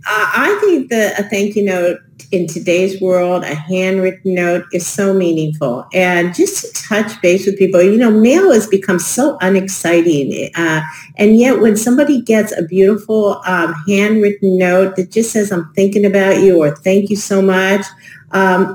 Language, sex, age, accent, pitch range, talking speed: English, female, 50-69, American, 170-200 Hz, 175 wpm